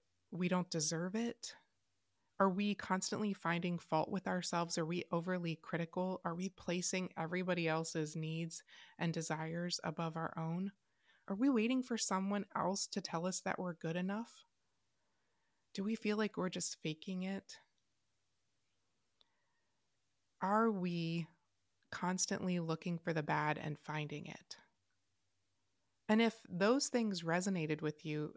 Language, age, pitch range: English, 20-39, 160-195 Hz